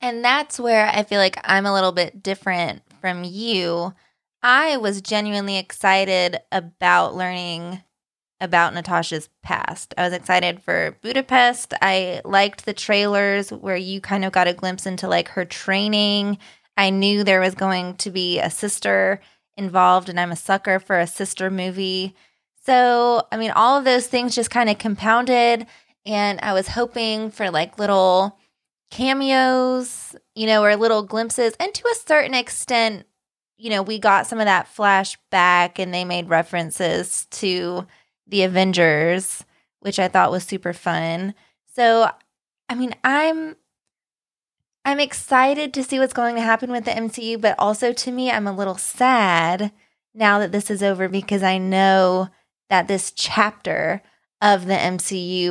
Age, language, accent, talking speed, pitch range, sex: 20-39, English, American, 160 wpm, 185-230 Hz, female